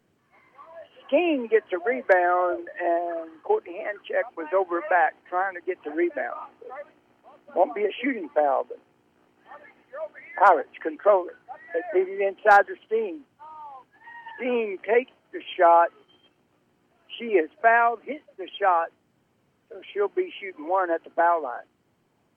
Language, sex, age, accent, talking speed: English, male, 60-79, American, 125 wpm